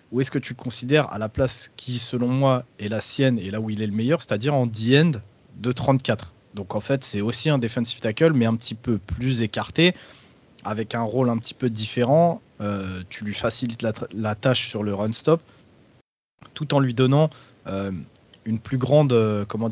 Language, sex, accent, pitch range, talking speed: French, male, French, 110-130 Hz, 215 wpm